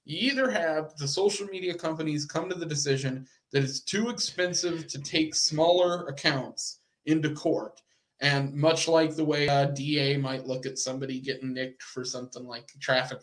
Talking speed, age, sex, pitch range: 170 wpm, 20-39, male, 135-165 Hz